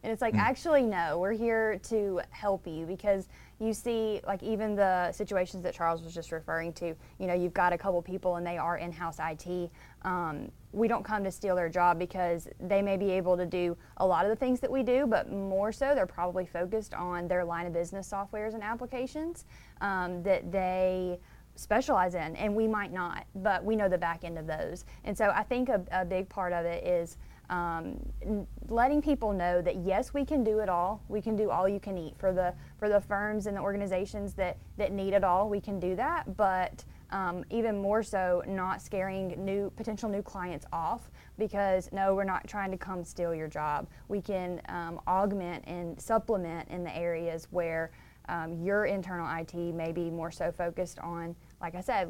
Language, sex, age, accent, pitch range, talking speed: English, female, 20-39, American, 175-205 Hz, 205 wpm